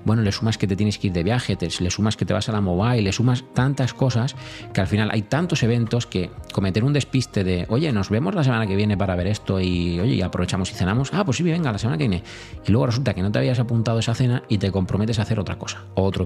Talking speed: 280 wpm